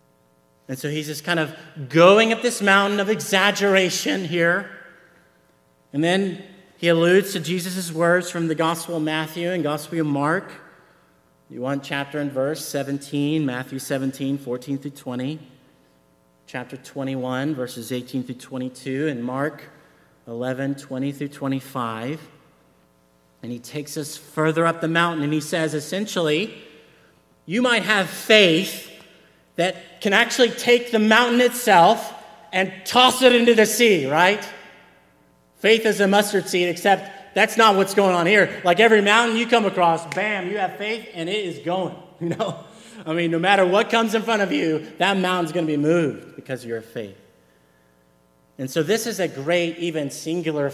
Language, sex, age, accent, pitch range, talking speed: English, male, 40-59, American, 130-190 Hz, 165 wpm